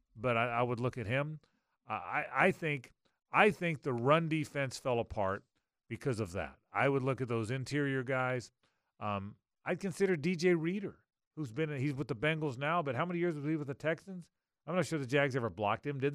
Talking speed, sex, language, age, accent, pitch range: 220 wpm, male, English, 40-59, American, 120-165 Hz